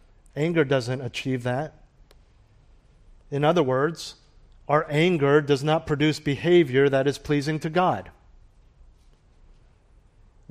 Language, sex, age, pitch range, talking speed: English, male, 40-59, 140-170 Hz, 110 wpm